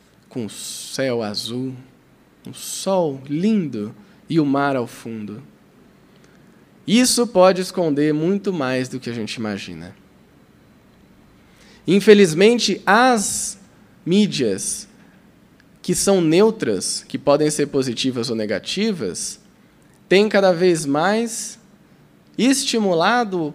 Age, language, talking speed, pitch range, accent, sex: 20-39, Portuguese, 100 wpm, 135-205 Hz, Brazilian, male